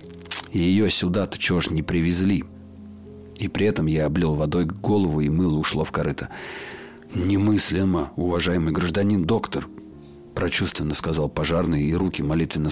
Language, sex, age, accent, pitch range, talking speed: Russian, male, 40-59, native, 80-100 Hz, 130 wpm